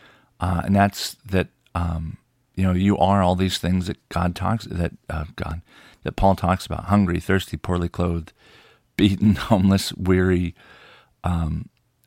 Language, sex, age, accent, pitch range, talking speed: English, male, 40-59, American, 85-100 Hz, 150 wpm